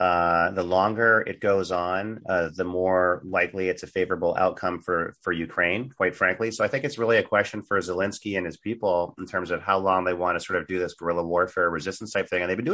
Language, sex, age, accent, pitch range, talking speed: English, male, 30-49, American, 90-120 Hz, 240 wpm